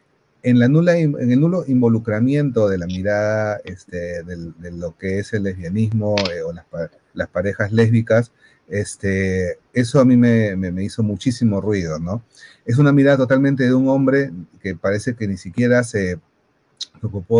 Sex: male